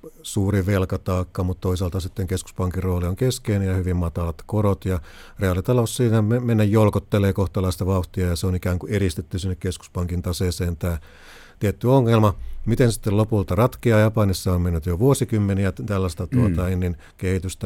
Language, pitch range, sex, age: Finnish, 90-110 Hz, male, 50-69